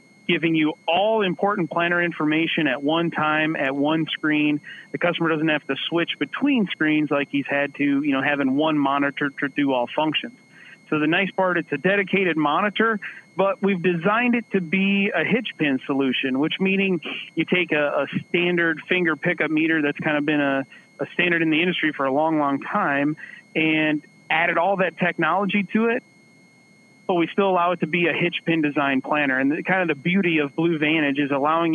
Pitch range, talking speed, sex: 150-180 Hz, 200 wpm, male